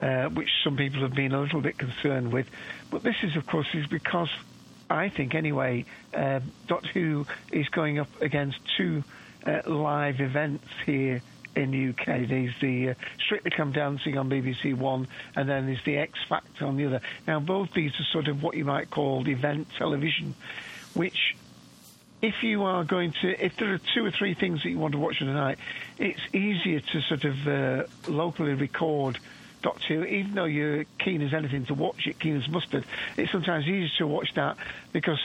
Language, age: English, 50-69